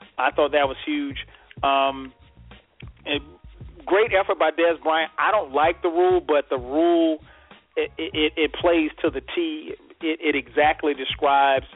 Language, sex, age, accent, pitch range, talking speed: English, male, 40-59, American, 135-160 Hz, 155 wpm